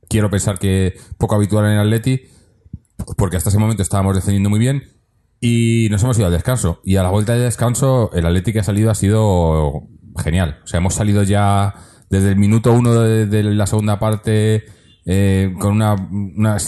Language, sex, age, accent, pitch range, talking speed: Spanish, male, 30-49, Spanish, 95-110 Hz, 195 wpm